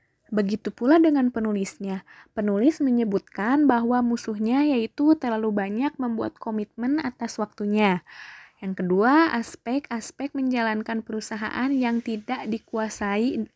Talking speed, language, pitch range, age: 100 wpm, Indonesian, 210-250 Hz, 10-29